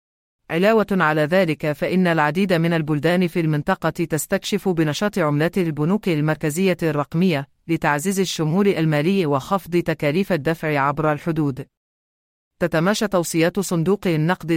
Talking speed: 110 wpm